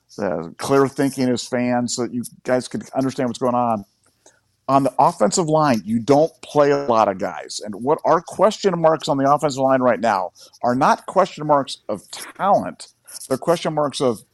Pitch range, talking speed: 125-165 Hz, 195 wpm